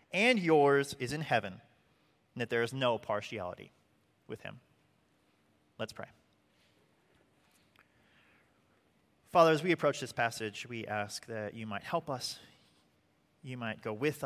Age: 30-49